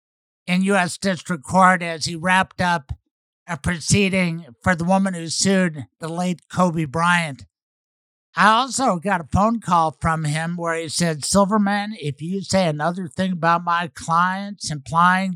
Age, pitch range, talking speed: 60-79, 160-190 Hz, 155 wpm